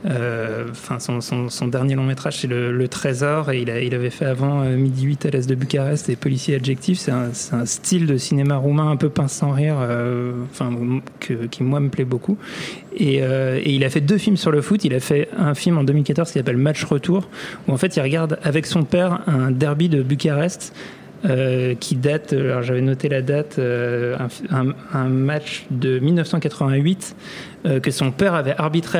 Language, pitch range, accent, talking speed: French, 130-165 Hz, French, 210 wpm